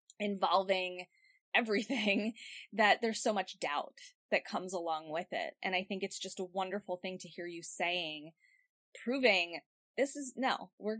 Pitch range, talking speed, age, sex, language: 180-235 Hz, 160 wpm, 20-39, female, English